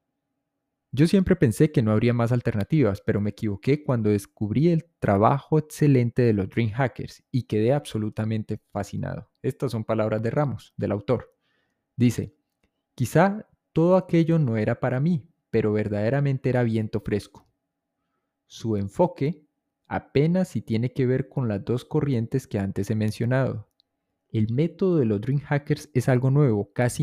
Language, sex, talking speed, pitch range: Spanish, male, 150 wpm, 110-145 Hz